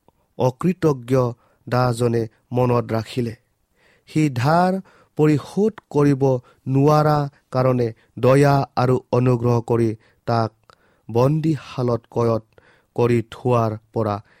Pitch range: 120-150 Hz